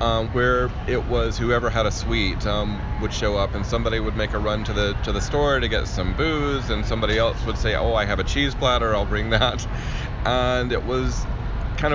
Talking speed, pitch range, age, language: 225 wpm, 105-120 Hz, 30-49, English